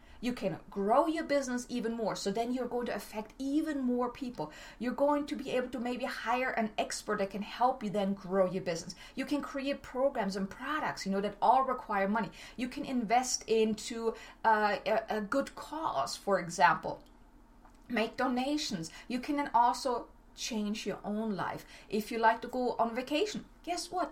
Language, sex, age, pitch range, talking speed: English, female, 30-49, 205-260 Hz, 185 wpm